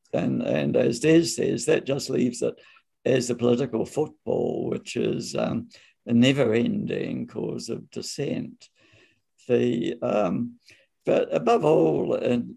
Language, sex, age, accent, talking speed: English, male, 60-79, British, 130 wpm